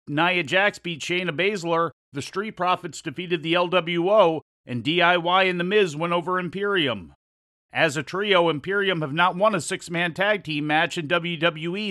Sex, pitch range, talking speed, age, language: male, 160-190 Hz, 165 wpm, 40-59, English